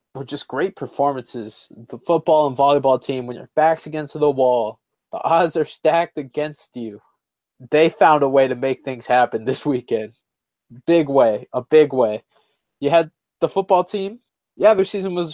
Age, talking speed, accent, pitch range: 20-39, 175 wpm, American, 130-170 Hz